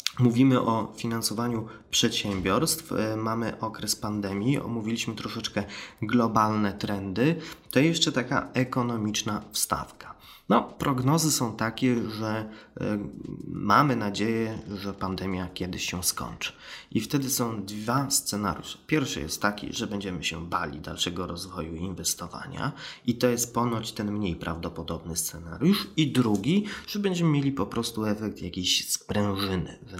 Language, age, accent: Polish, 20-39, native